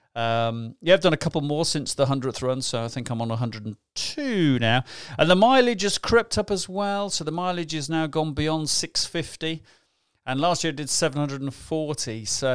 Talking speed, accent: 195 wpm, British